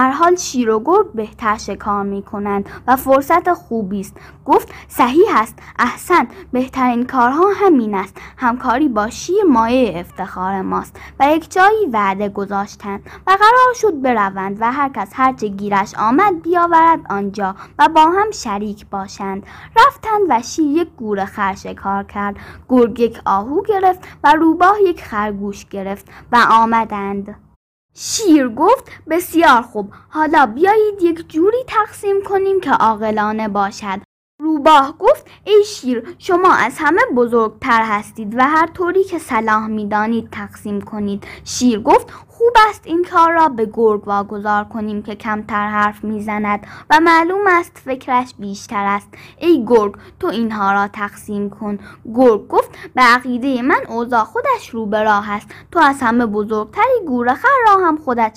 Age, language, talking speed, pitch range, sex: 10-29, Persian, 145 wpm, 210-335 Hz, female